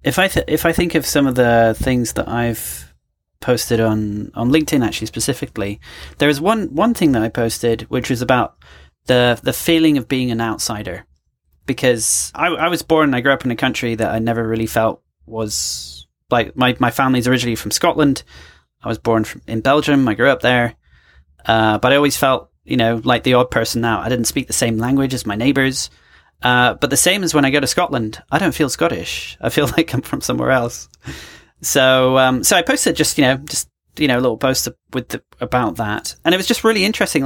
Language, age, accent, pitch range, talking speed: English, 30-49, British, 110-140 Hz, 220 wpm